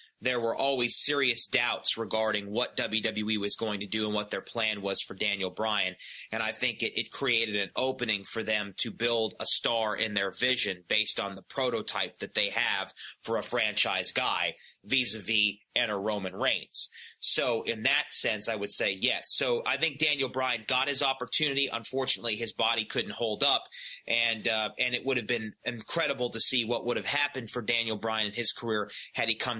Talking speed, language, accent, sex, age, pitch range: 200 wpm, English, American, male, 30-49, 105-125 Hz